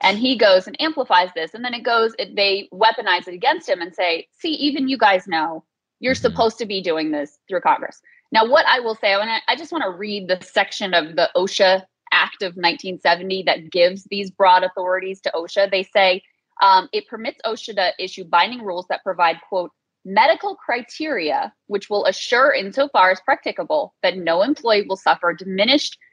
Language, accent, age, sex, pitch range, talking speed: English, American, 20-39, female, 180-270 Hz, 190 wpm